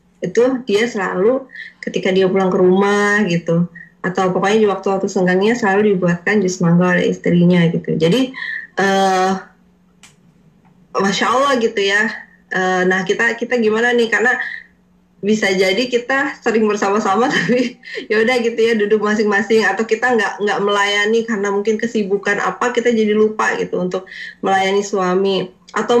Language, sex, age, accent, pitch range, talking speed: Indonesian, female, 20-39, native, 190-230 Hz, 140 wpm